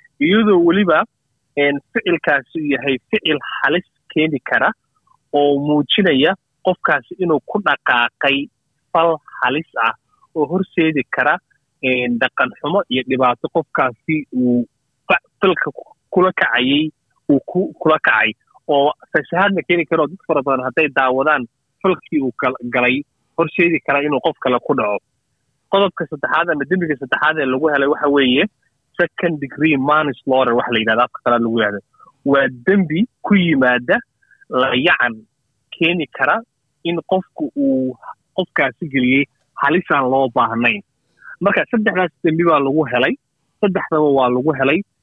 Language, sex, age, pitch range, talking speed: English, male, 30-49, 130-170 Hz, 60 wpm